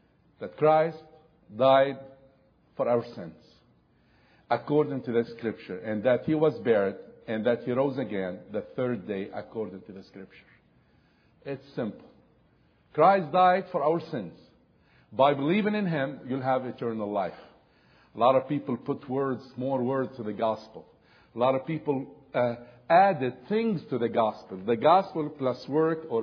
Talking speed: 155 wpm